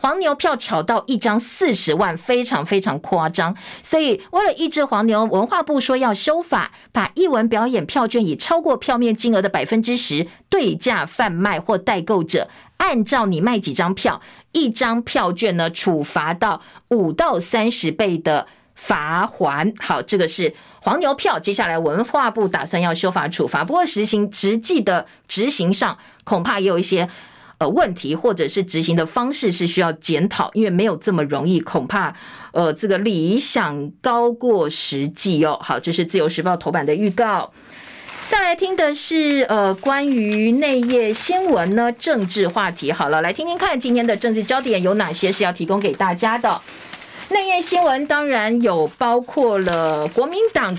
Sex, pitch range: female, 180-250 Hz